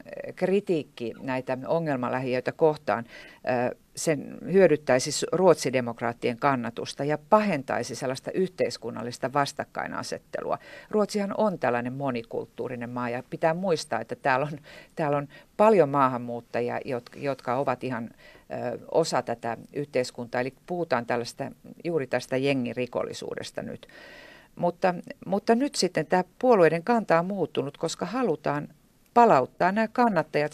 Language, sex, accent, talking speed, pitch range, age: Finnish, female, native, 110 wpm, 125-180 Hz, 50-69